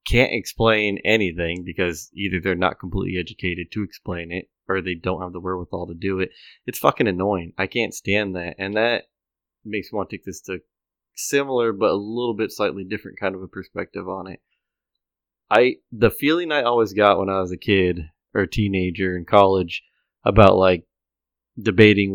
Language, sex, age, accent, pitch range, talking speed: English, male, 20-39, American, 90-110 Hz, 185 wpm